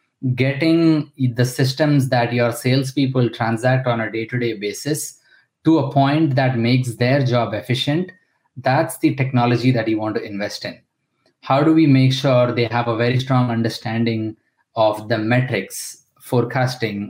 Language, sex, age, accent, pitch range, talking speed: English, male, 20-39, Indian, 115-135 Hz, 150 wpm